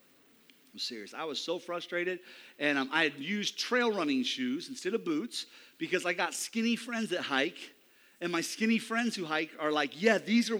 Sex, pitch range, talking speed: male, 175-245 Hz, 195 wpm